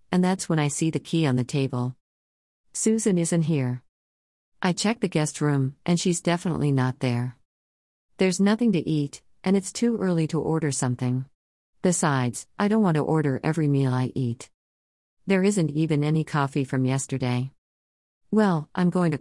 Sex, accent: female, American